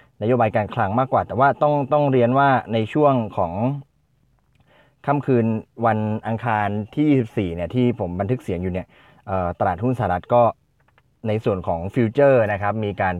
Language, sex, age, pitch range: Thai, male, 20-39, 95-125 Hz